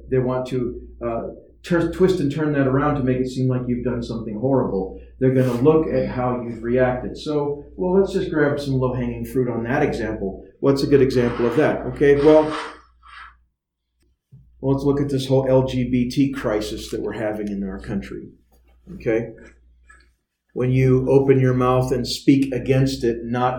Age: 40-59